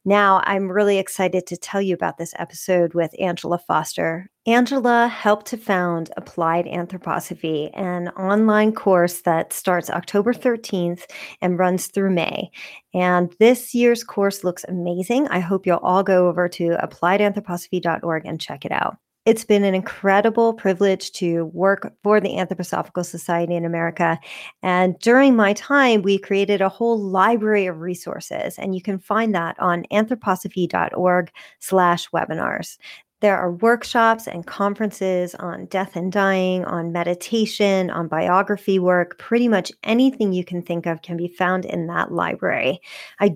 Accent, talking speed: American, 150 wpm